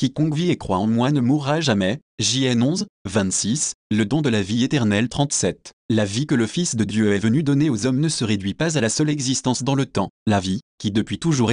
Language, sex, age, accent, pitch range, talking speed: French, male, 30-49, French, 110-150 Hz, 245 wpm